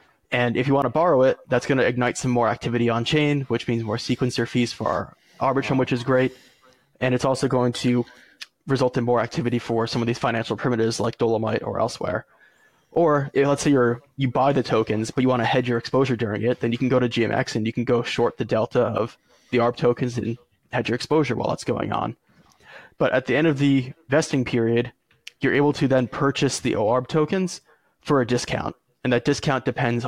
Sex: male